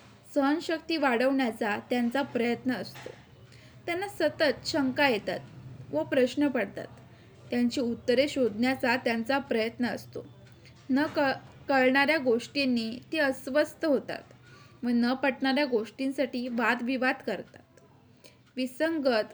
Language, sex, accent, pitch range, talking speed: Marathi, female, native, 240-285 Hz, 100 wpm